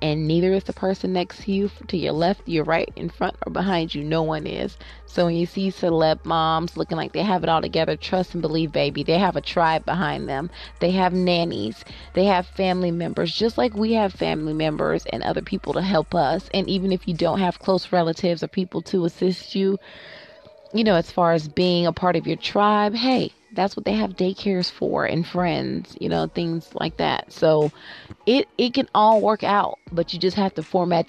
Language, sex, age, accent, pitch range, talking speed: English, female, 30-49, American, 160-190 Hz, 220 wpm